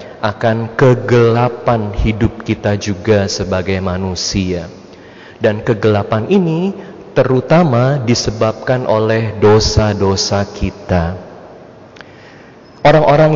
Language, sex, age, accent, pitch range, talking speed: Indonesian, male, 30-49, native, 110-145 Hz, 70 wpm